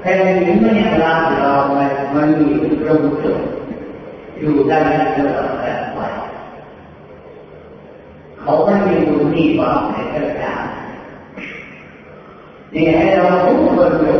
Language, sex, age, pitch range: Thai, female, 40-59, 150-210 Hz